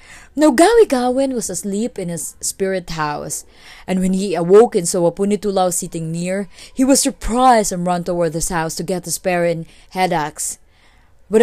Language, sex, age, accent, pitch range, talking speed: English, female, 20-39, Filipino, 170-245 Hz, 165 wpm